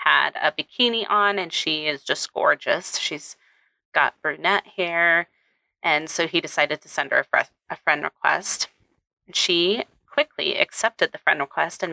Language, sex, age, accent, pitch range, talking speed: English, female, 30-49, American, 155-190 Hz, 155 wpm